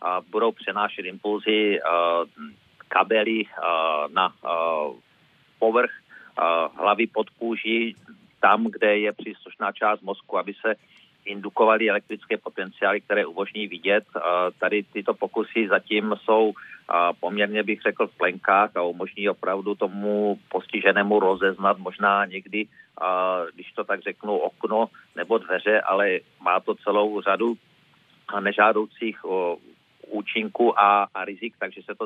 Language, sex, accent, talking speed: Czech, male, native, 130 wpm